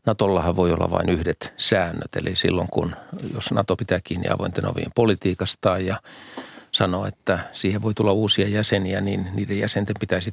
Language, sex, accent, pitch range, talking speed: Finnish, male, native, 95-105 Hz, 165 wpm